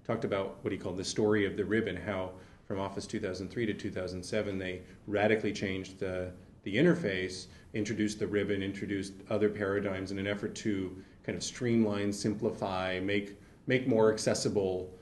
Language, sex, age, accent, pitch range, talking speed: English, male, 30-49, American, 100-110 Hz, 160 wpm